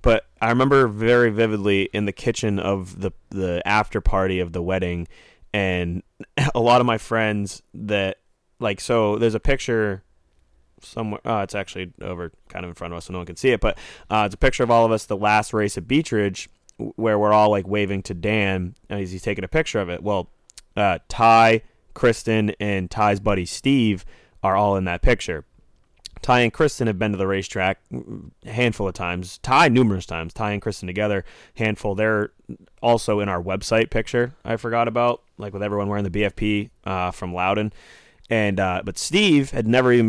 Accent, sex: American, male